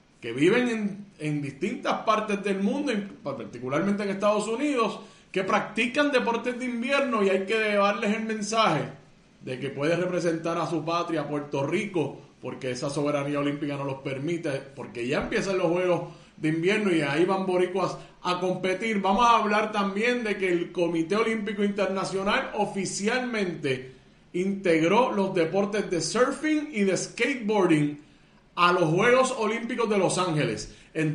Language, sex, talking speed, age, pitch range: Spanish, male, 150 wpm, 30-49, 170-205 Hz